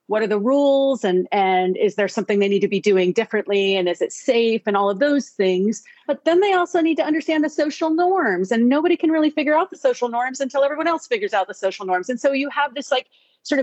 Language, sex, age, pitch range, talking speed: English, female, 40-59, 210-290 Hz, 255 wpm